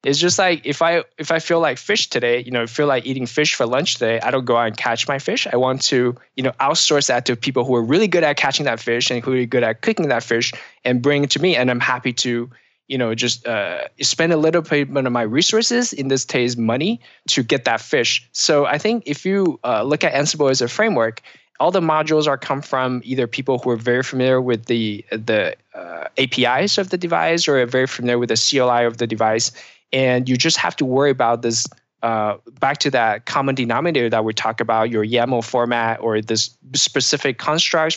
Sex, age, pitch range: male, 20-39, 120-140 Hz